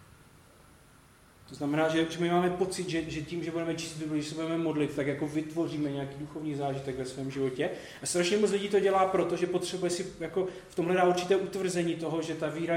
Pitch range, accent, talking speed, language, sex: 135-160 Hz, native, 210 wpm, Czech, male